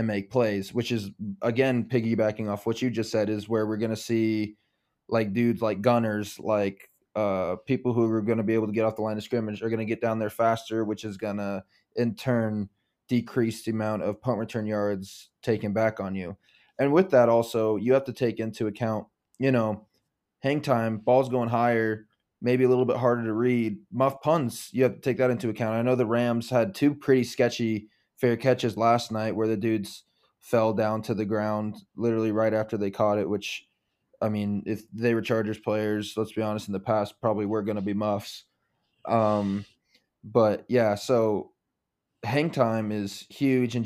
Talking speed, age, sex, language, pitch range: 205 wpm, 20-39, male, English, 105-120 Hz